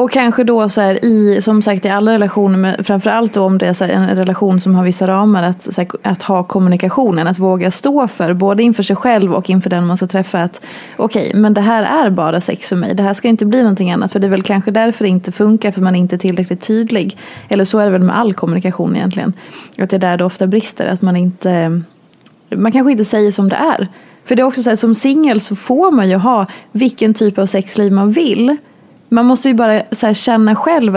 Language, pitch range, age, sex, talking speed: Swedish, 195-235 Hz, 20-39, female, 250 wpm